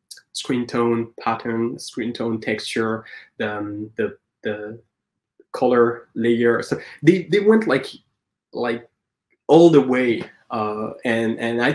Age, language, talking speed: 20-39, English, 130 wpm